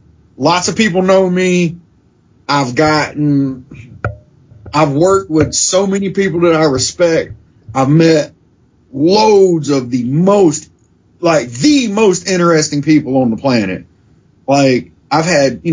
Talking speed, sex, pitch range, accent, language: 130 wpm, male, 140-185 Hz, American, English